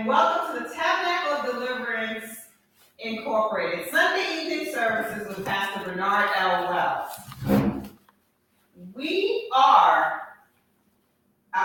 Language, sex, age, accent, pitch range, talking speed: English, female, 40-59, American, 200-255 Hz, 80 wpm